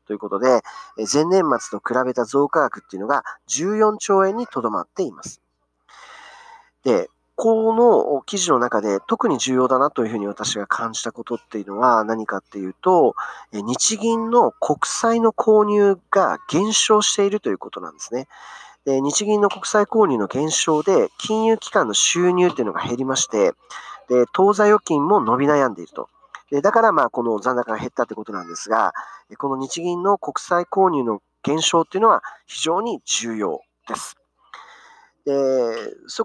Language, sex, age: Japanese, male, 40-59